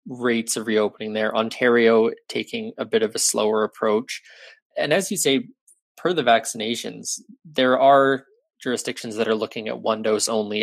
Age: 20-39